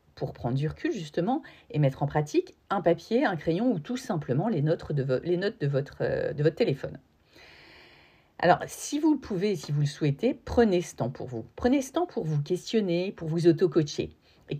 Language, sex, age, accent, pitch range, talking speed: French, female, 40-59, French, 155-250 Hz, 190 wpm